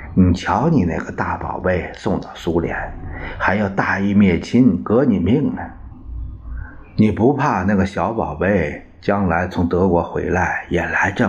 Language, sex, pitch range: Chinese, male, 80-100 Hz